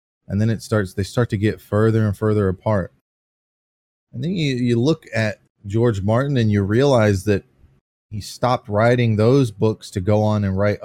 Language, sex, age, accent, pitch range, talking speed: English, male, 30-49, American, 85-105 Hz, 190 wpm